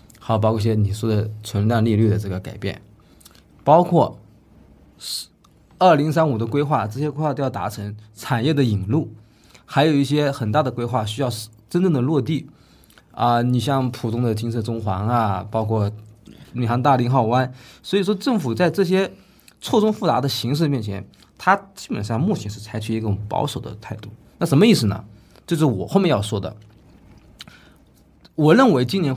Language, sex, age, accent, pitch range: Chinese, male, 20-39, native, 105-130 Hz